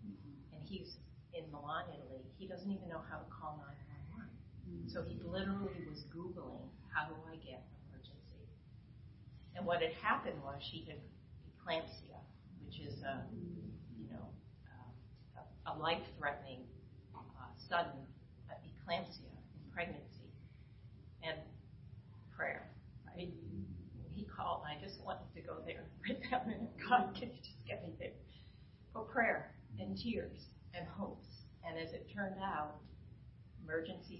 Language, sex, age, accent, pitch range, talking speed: English, female, 40-59, American, 115-175 Hz, 130 wpm